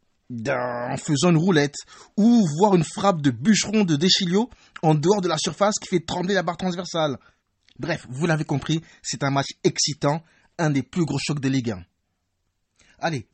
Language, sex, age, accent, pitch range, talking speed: French, male, 30-49, French, 130-185 Hz, 180 wpm